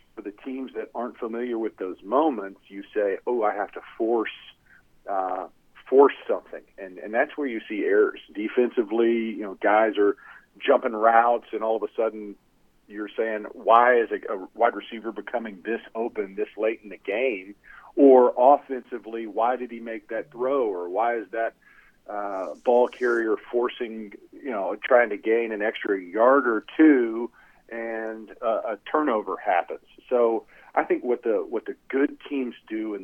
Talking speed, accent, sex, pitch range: 170 wpm, American, male, 110-165 Hz